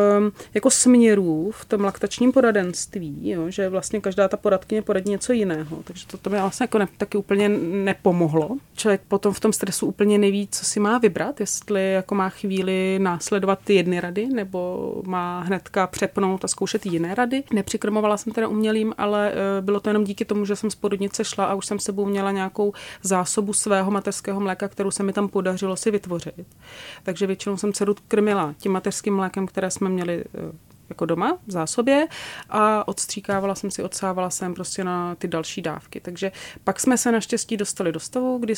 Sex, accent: female, native